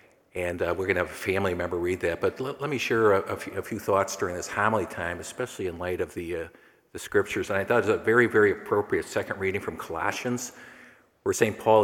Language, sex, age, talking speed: English, male, 50-69, 250 wpm